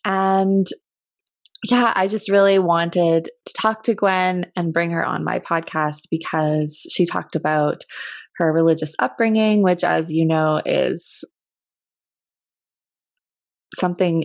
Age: 20-39